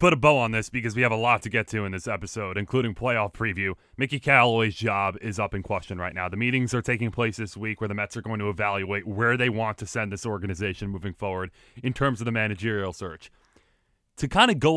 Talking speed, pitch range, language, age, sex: 250 wpm, 105-135 Hz, English, 20-39, male